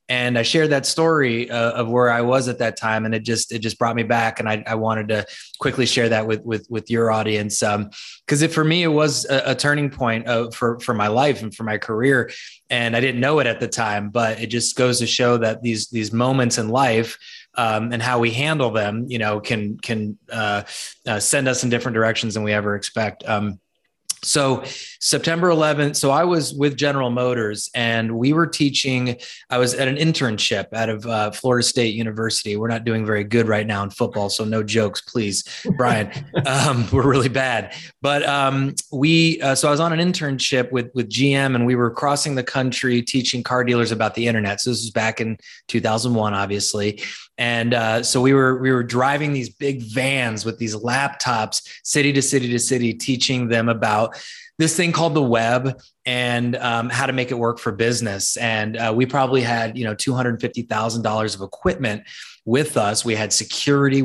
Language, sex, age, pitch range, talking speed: English, male, 20-39, 110-135 Hz, 205 wpm